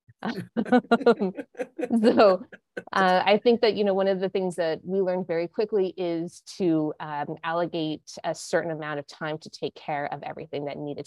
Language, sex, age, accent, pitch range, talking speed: English, female, 20-39, American, 150-185 Hz, 175 wpm